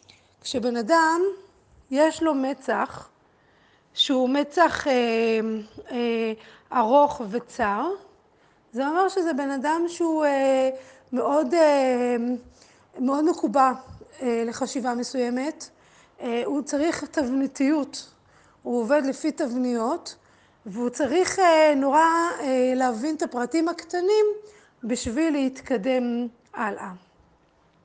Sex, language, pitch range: female, Hebrew, 245-315 Hz